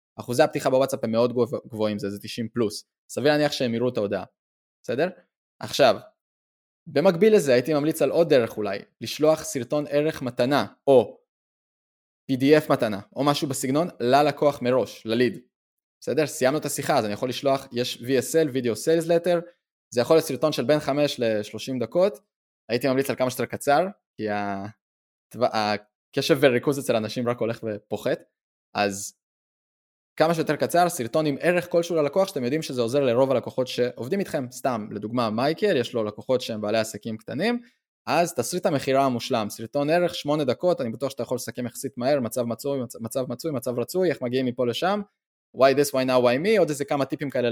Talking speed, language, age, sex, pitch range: 170 wpm, Hebrew, 20-39, male, 120-155 Hz